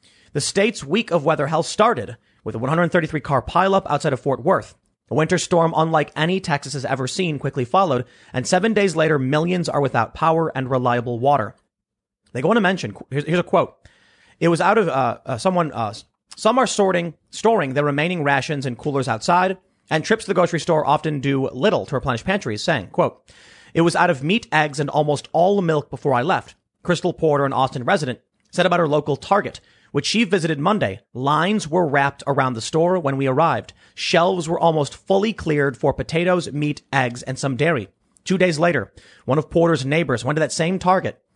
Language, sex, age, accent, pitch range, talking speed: English, male, 30-49, American, 130-170 Hz, 200 wpm